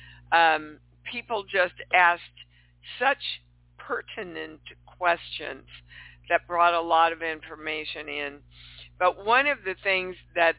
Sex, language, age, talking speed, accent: female, English, 60-79, 115 wpm, American